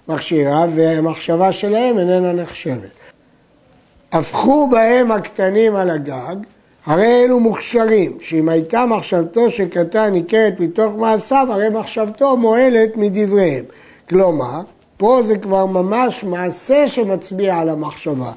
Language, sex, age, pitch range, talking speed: Hebrew, male, 60-79, 175-225 Hz, 110 wpm